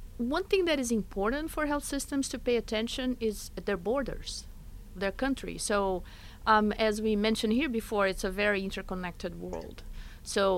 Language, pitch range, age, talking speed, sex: English, 195-240 Hz, 50-69, 165 wpm, female